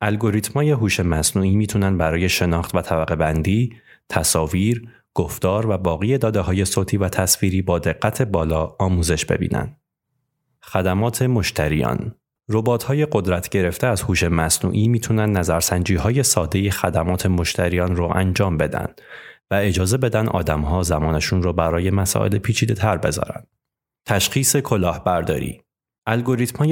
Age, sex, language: 30-49, male, Persian